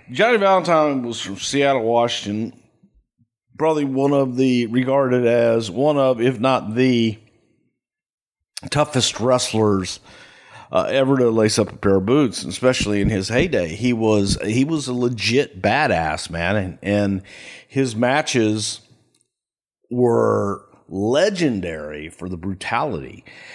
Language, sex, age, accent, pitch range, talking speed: English, male, 50-69, American, 100-135 Hz, 125 wpm